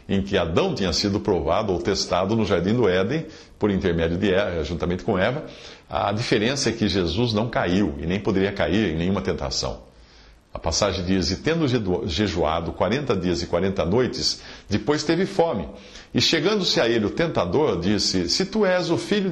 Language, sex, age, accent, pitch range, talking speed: English, male, 50-69, Brazilian, 90-135 Hz, 185 wpm